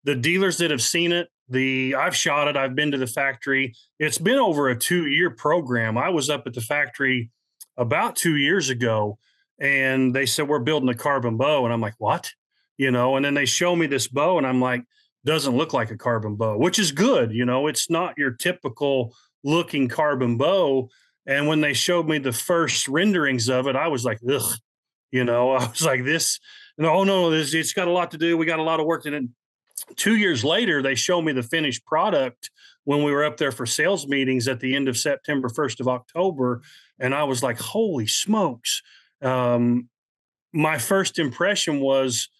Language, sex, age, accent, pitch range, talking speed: English, male, 30-49, American, 125-160 Hz, 205 wpm